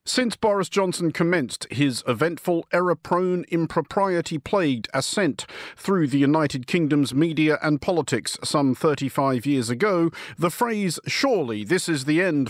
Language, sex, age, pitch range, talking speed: English, male, 50-69, 135-185 Hz, 130 wpm